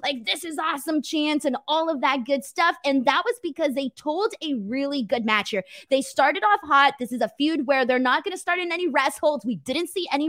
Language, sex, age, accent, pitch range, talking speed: English, female, 20-39, American, 240-305 Hz, 250 wpm